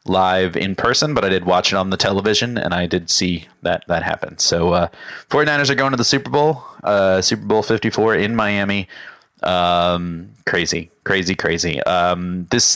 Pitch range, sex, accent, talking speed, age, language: 90-110 Hz, male, American, 185 wpm, 30-49, English